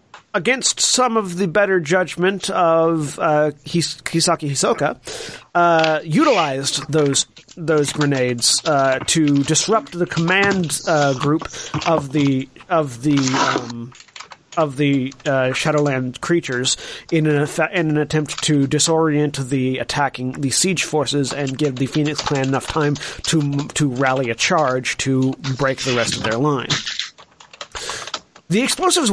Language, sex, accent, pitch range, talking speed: English, male, American, 135-170 Hz, 140 wpm